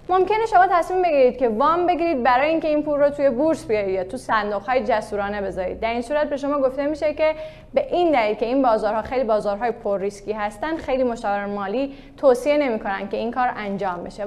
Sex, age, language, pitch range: female, 10-29, Persian, 215-275 Hz